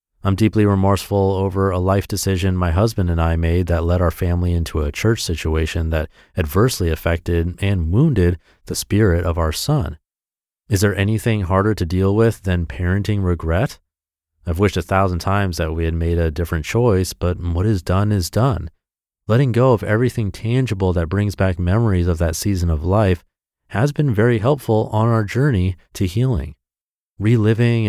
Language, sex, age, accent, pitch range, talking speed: English, male, 30-49, American, 85-110 Hz, 175 wpm